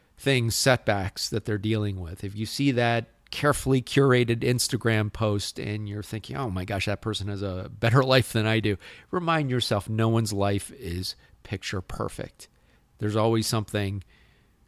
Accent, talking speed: American, 165 wpm